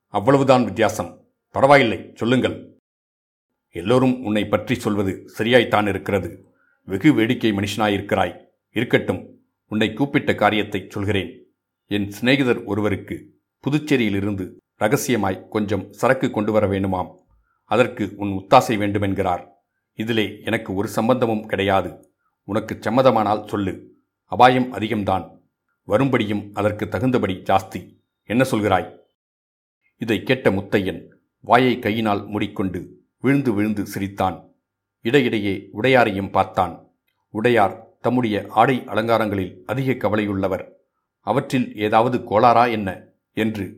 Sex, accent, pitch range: male, native, 100-115 Hz